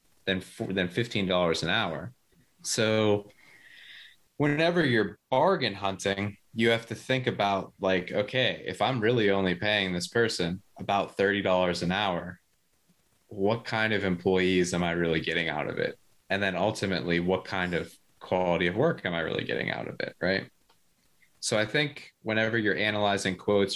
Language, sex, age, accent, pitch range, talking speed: English, male, 20-39, American, 90-105 Hz, 160 wpm